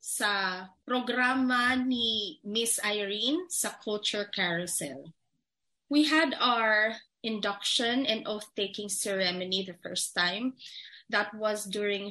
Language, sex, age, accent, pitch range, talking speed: English, female, 20-39, Filipino, 195-250 Hz, 105 wpm